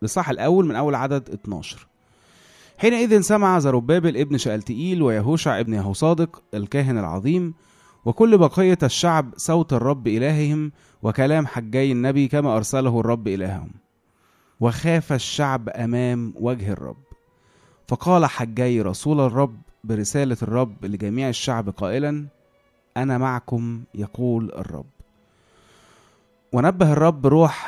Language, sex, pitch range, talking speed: Arabic, male, 110-145 Hz, 110 wpm